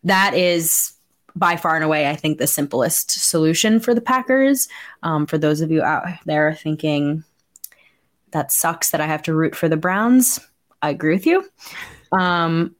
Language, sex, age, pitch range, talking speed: English, female, 20-39, 155-210 Hz, 175 wpm